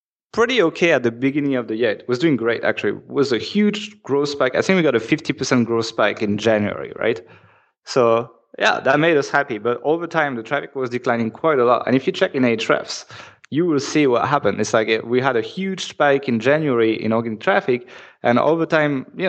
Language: English